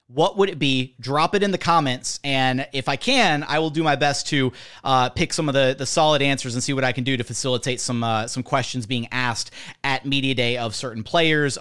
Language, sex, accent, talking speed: English, male, American, 245 wpm